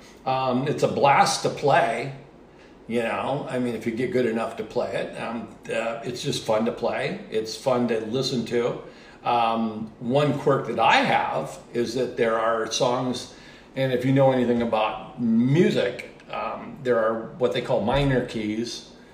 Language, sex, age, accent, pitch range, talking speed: English, male, 50-69, American, 115-140 Hz, 175 wpm